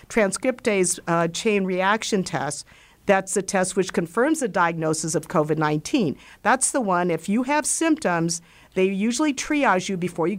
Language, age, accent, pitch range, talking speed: English, 50-69, American, 165-225 Hz, 155 wpm